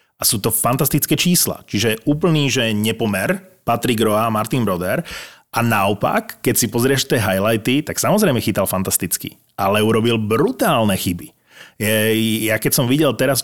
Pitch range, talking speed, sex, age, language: 110-130 Hz, 150 wpm, male, 30-49, Slovak